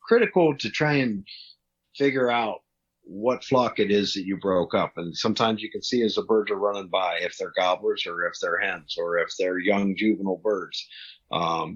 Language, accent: English, American